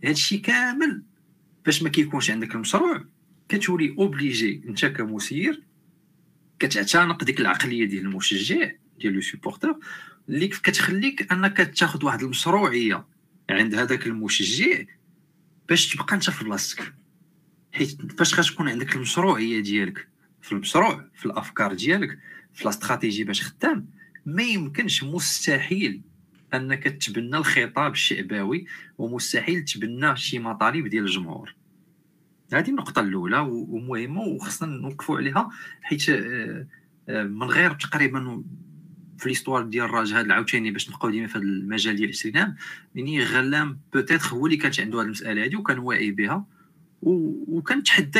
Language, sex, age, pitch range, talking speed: Arabic, male, 40-59, 115-175 Hz, 125 wpm